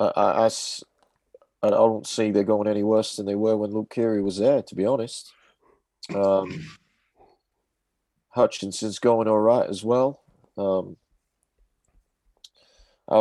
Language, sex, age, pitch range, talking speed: English, male, 40-59, 90-105 Hz, 130 wpm